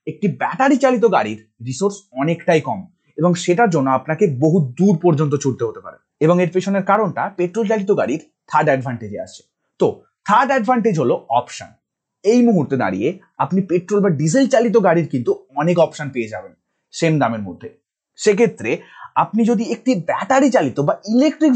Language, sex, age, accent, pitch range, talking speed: Bengali, male, 30-49, native, 145-225 Hz, 50 wpm